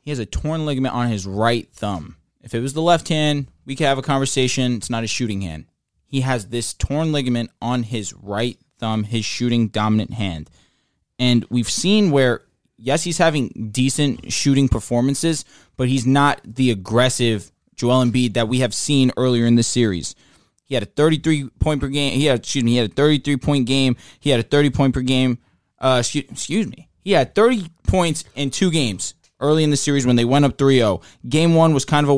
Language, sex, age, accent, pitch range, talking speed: English, male, 20-39, American, 120-140 Hz, 205 wpm